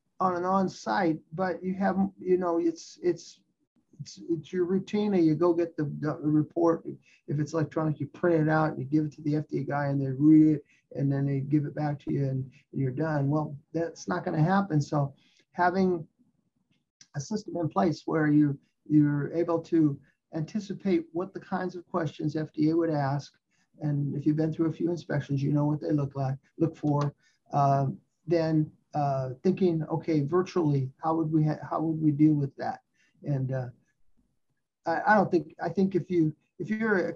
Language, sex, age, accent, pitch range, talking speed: English, male, 50-69, American, 150-180 Hz, 195 wpm